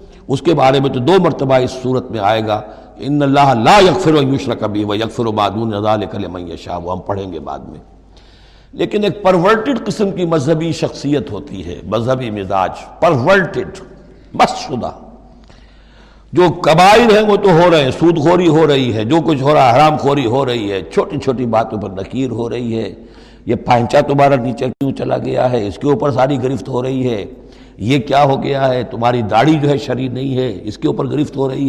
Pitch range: 110-155 Hz